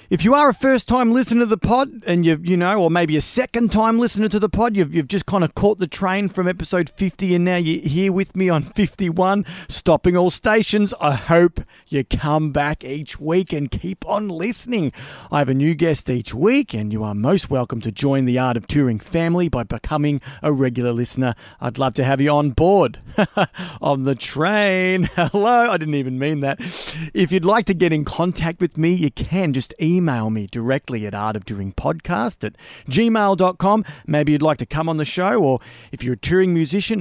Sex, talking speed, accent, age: male, 210 wpm, Australian, 40-59